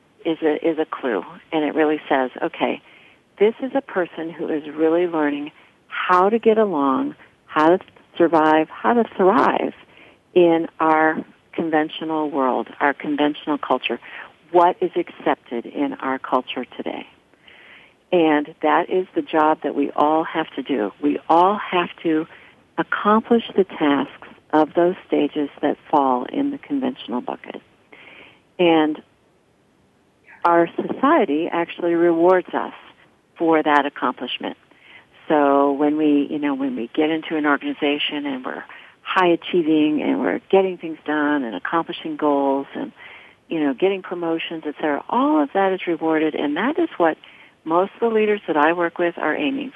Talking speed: 150 wpm